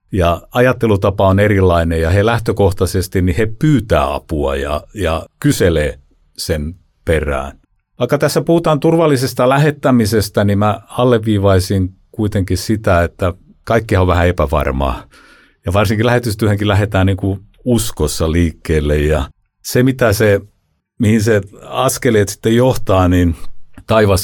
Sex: male